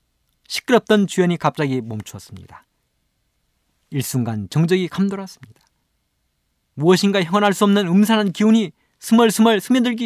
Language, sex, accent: Korean, male, native